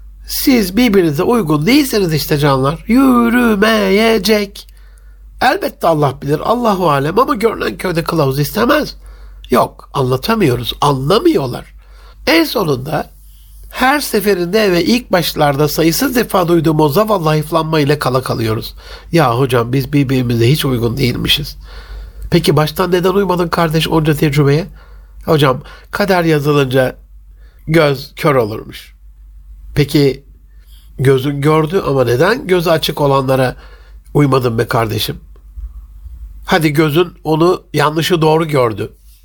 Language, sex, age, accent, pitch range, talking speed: Turkish, male, 60-79, native, 135-185 Hz, 110 wpm